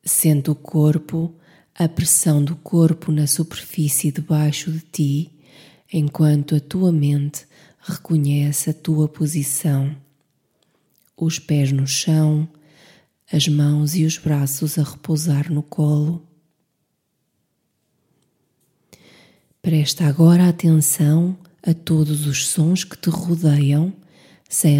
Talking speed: 105 wpm